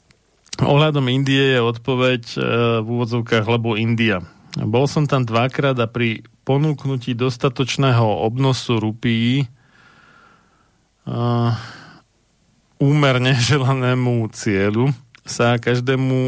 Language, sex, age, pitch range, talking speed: Slovak, male, 40-59, 115-130 Hz, 90 wpm